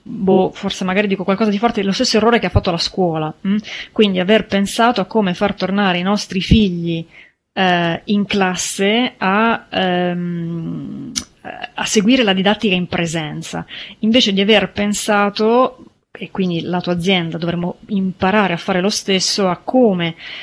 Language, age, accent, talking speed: Italian, 30-49, native, 160 wpm